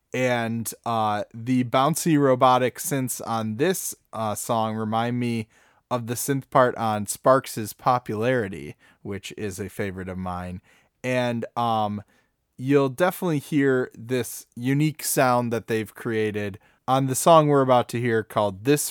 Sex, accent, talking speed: male, American, 145 wpm